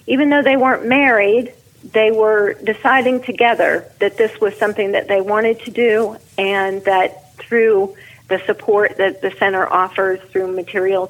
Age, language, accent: 40-59, English, American